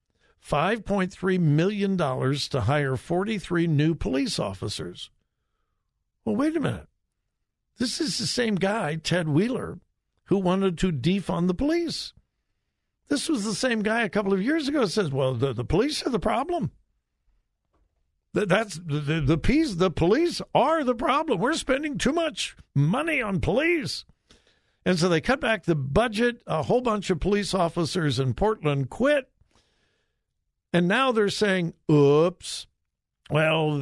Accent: American